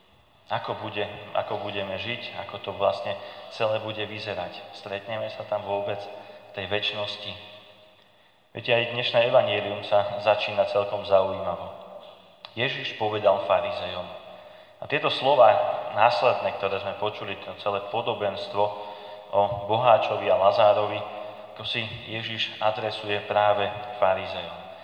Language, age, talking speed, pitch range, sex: Slovak, 30-49, 120 wpm, 100-110 Hz, male